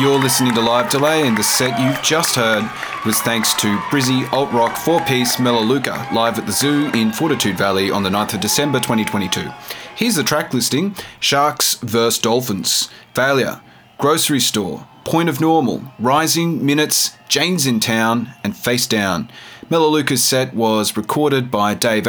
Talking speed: 160 wpm